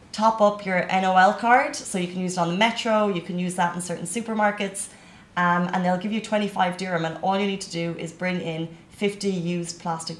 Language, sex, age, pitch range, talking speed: Arabic, female, 30-49, 170-205 Hz, 230 wpm